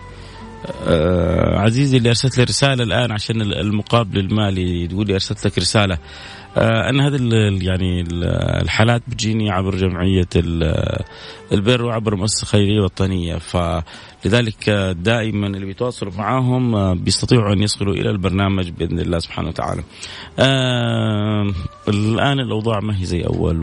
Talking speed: 125 wpm